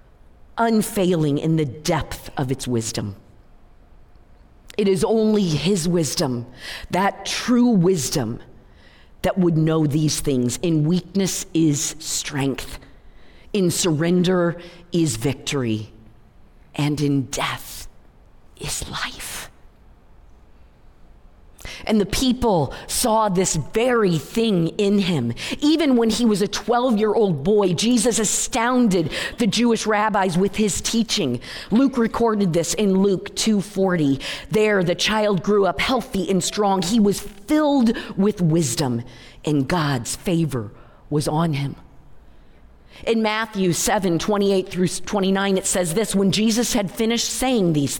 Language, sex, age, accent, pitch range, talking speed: English, female, 40-59, American, 145-210 Hz, 120 wpm